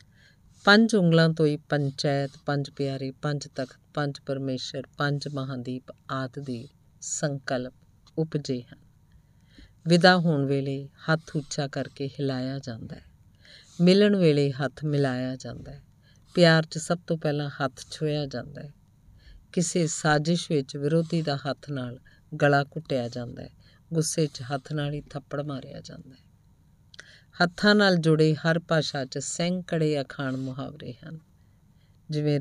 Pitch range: 135-155 Hz